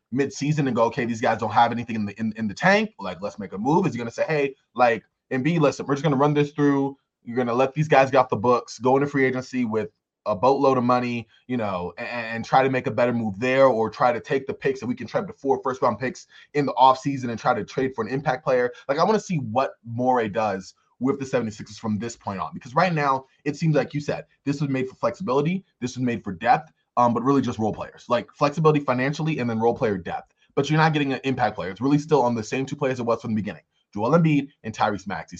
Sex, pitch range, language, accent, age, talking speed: male, 120-150 Hz, English, American, 20-39, 275 wpm